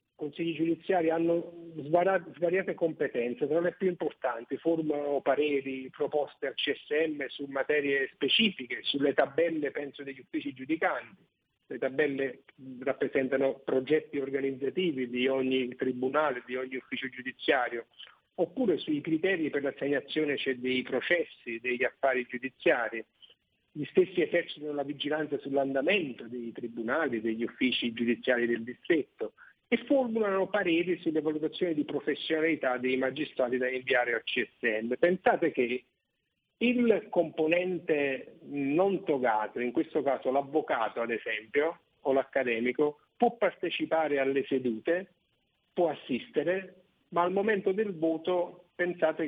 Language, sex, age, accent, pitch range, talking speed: Italian, male, 50-69, native, 130-175 Hz, 120 wpm